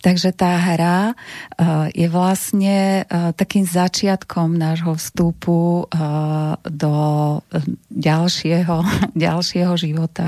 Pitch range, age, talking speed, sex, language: 165-180 Hz, 40-59, 75 wpm, female, Slovak